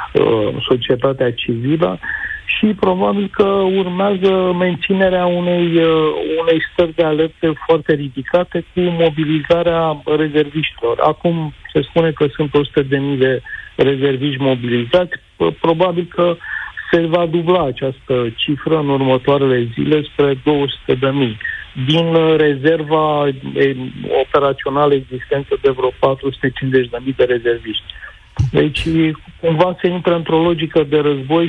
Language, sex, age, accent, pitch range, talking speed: Romanian, male, 50-69, native, 135-165 Hz, 105 wpm